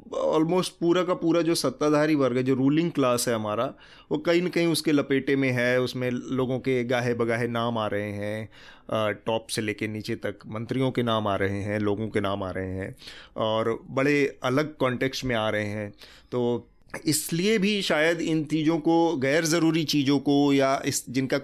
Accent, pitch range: native, 115-145 Hz